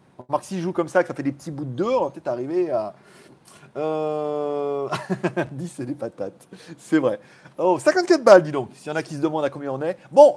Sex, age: male, 40-59